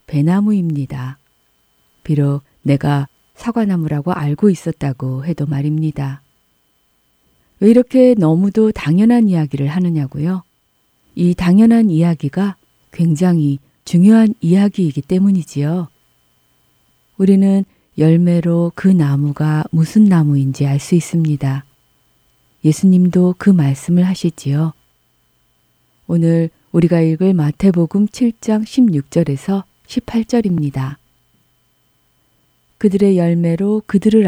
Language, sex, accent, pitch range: Korean, female, native, 135-180 Hz